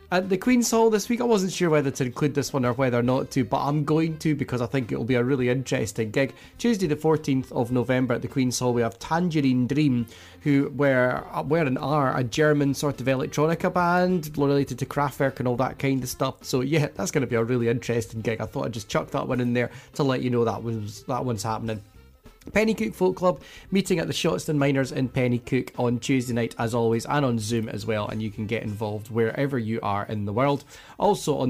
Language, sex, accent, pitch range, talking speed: English, male, British, 120-150 Hz, 240 wpm